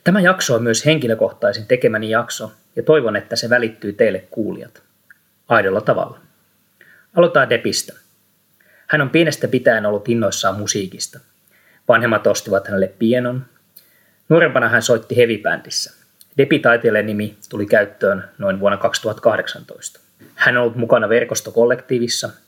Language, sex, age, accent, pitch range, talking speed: Finnish, male, 20-39, native, 110-125 Hz, 115 wpm